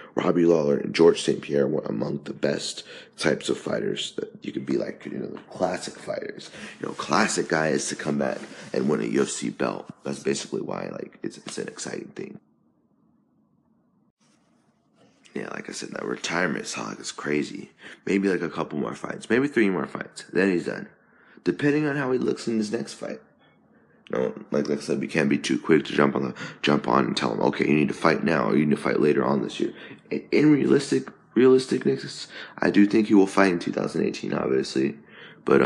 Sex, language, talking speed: male, English, 210 wpm